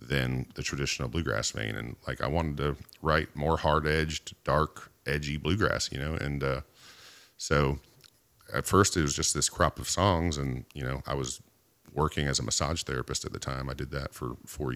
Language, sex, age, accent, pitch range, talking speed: English, male, 40-59, American, 70-85 Hz, 200 wpm